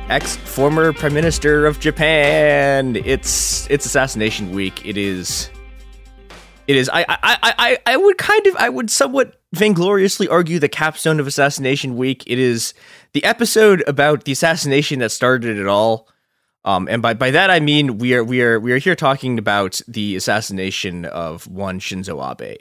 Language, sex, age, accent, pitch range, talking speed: English, male, 20-39, American, 105-150 Hz, 170 wpm